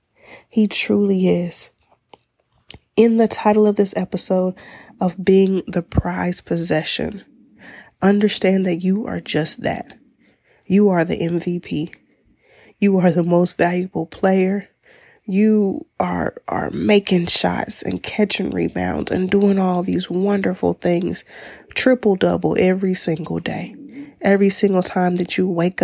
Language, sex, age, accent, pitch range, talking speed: English, female, 20-39, American, 175-210 Hz, 125 wpm